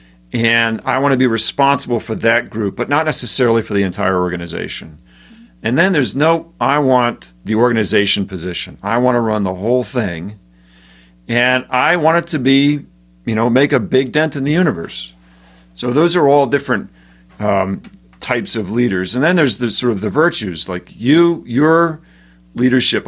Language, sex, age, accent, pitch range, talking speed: English, male, 50-69, American, 90-130 Hz, 175 wpm